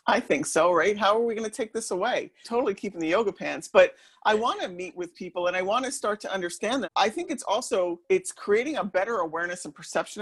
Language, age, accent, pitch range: English, 40-59, American, 165-215 Hz